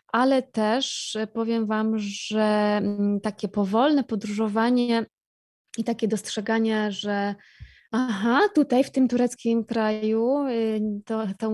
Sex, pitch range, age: female, 215-255 Hz, 20-39